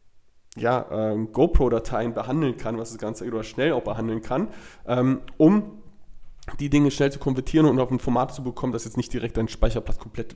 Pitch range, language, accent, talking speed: 120-145 Hz, German, German, 190 wpm